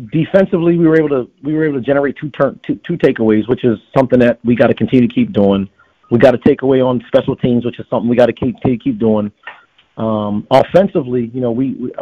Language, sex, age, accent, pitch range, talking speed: English, male, 40-59, American, 110-130 Hz, 245 wpm